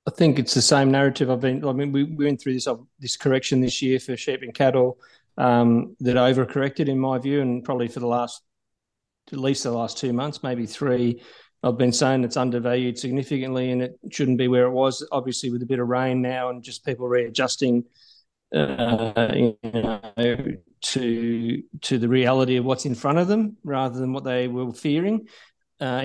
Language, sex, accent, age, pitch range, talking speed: English, male, Australian, 30-49, 125-140 Hz, 200 wpm